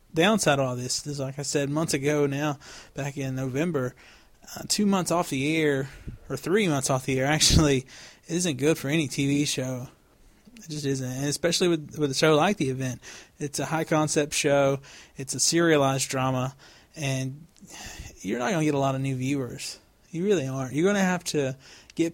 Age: 20-39